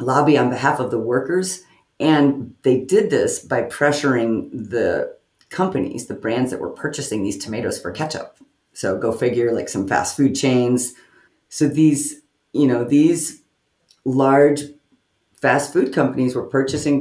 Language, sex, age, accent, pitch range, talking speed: English, female, 40-59, American, 120-145 Hz, 150 wpm